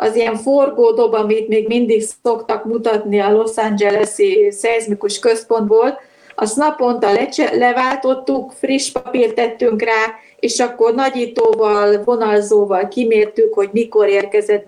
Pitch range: 215-255 Hz